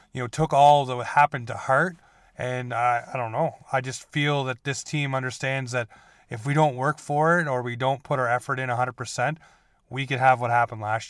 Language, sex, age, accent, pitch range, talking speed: English, male, 30-49, American, 120-140 Hz, 220 wpm